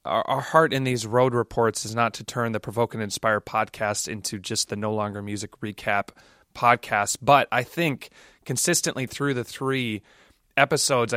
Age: 30-49